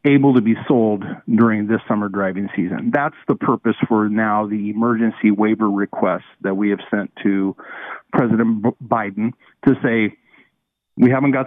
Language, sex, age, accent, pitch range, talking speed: English, male, 50-69, American, 105-125 Hz, 155 wpm